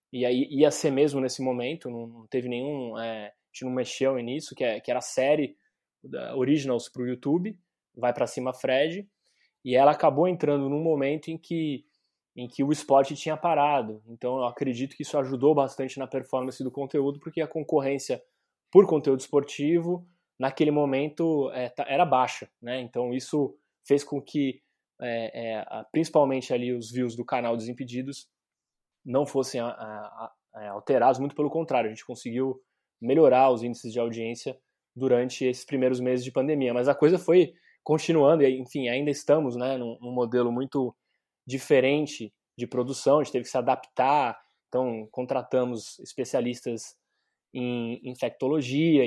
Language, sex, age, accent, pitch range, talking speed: Portuguese, male, 20-39, Brazilian, 125-145 Hz, 165 wpm